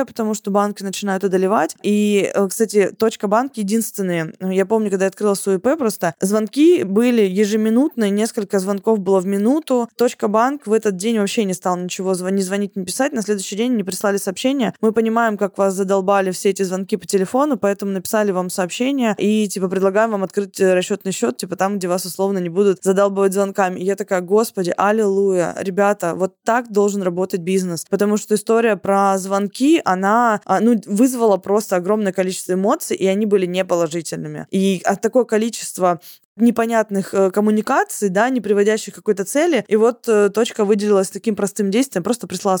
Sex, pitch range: female, 190-225 Hz